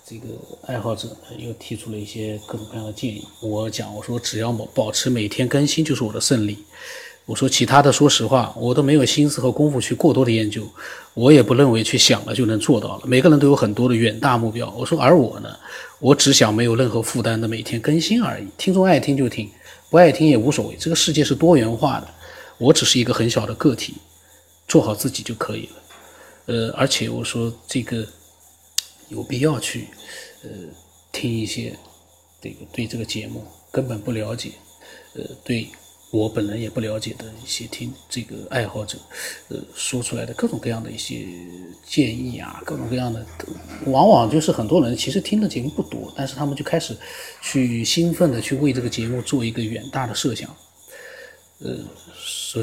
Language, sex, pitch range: Chinese, male, 110-140 Hz